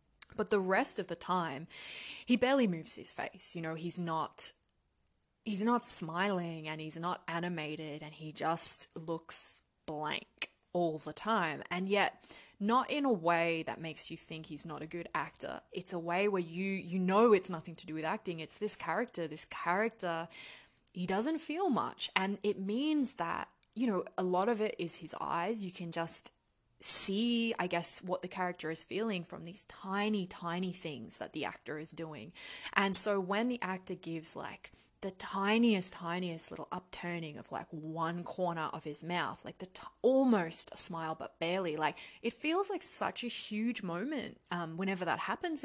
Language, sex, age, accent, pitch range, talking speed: English, female, 20-39, Australian, 165-210 Hz, 185 wpm